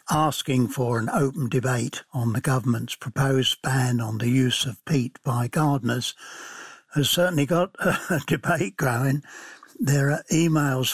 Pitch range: 125-150 Hz